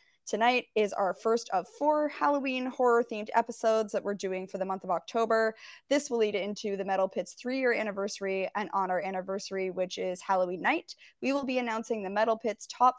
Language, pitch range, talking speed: English, 190-235 Hz, 195 wpm